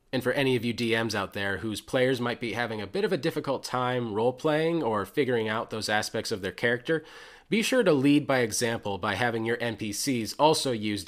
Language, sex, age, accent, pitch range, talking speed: English, male, 30-49, American, 105-135 Hz, 220 wpm